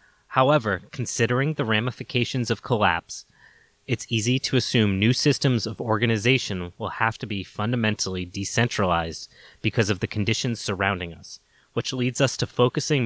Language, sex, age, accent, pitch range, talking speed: English, male, 20-39, American, 100-125 Hz, 140 wpm